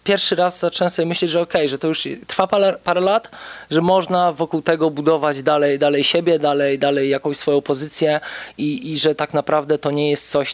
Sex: male